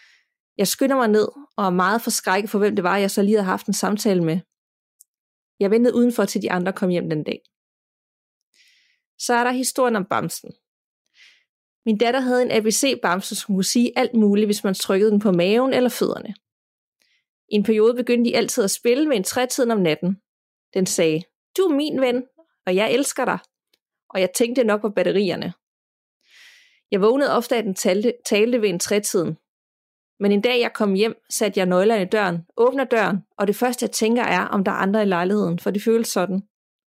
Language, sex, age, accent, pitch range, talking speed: Danish, female, 30-49, native, 200-245 Hz, 195 wpm